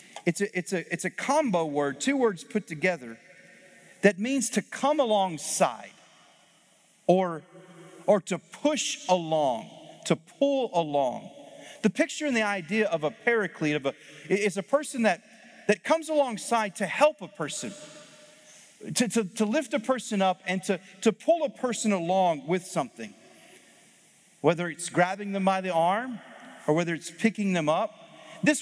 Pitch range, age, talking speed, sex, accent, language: 175-220 Hz, 40-59, 155 wpm, male, American, English